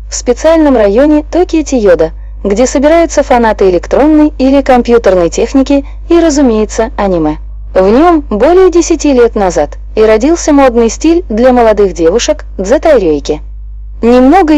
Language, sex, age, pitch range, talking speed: Russian, female, 20-39, 215-310 Hz, 125 wpm